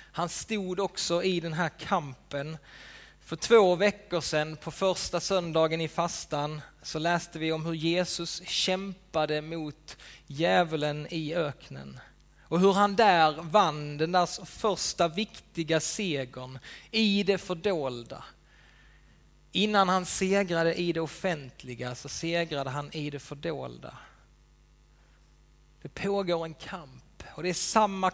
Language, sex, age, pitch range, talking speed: Swedish, male, 30-49, 155-190 Hz, 130 wpm